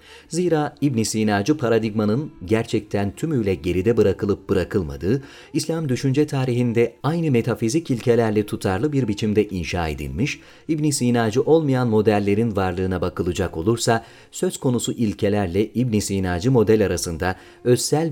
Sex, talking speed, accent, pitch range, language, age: male, 115 wpm, native, 100-140 Hz, Turkish, 40-59